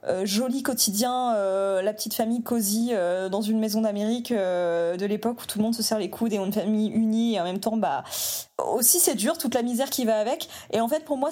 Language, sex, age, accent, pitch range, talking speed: French, female, 20-39, French, 200-235 Hz, 250 wpm